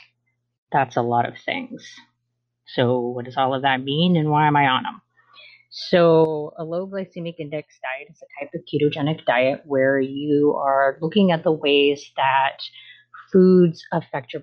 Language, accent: English, American